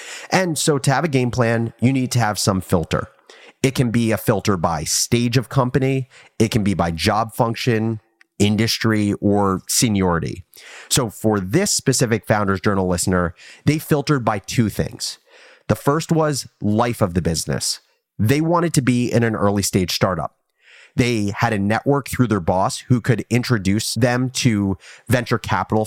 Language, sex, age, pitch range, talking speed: English, male, 30-49, 100-130 Hz, 170 wpm